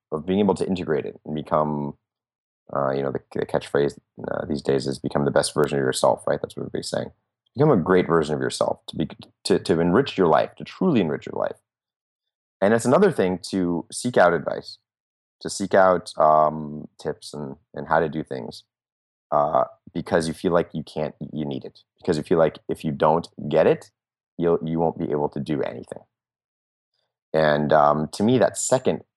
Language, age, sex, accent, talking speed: English, 30-49, male, American, 205 wpm